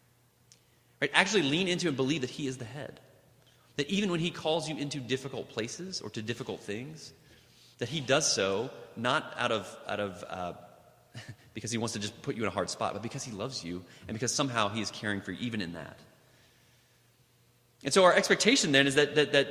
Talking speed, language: 215 wpm, English